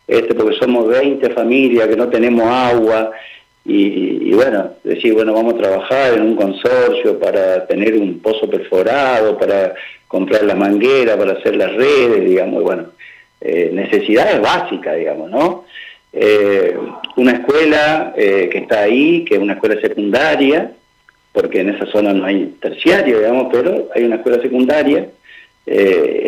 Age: 50-69